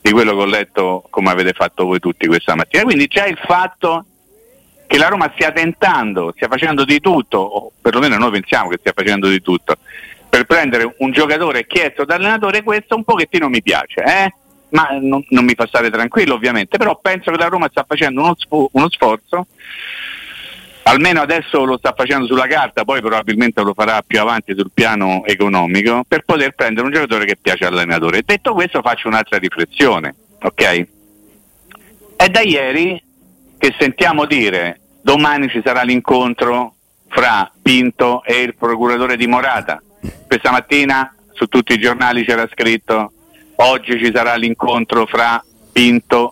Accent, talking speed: native, 165 wpm